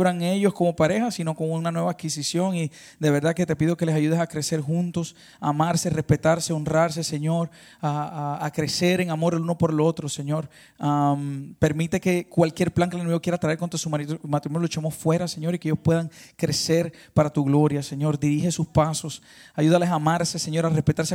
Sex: male